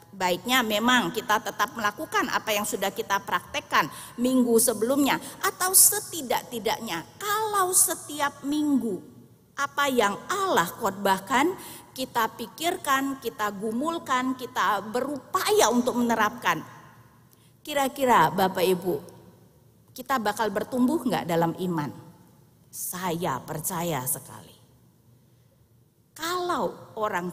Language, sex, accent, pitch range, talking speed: Indonesian, female, native, 185-265 Hz, 95 wpm